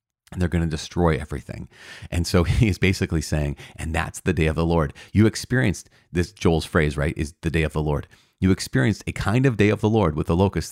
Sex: male